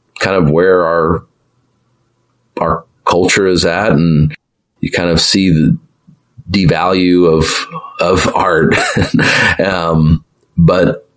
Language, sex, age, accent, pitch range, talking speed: English, male, 30-49, American, 80-90 Hz, 105 wpm